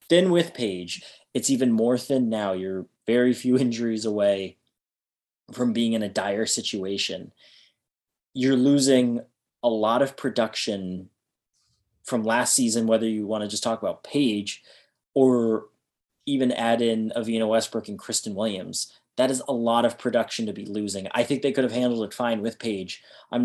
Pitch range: 100-125 Hz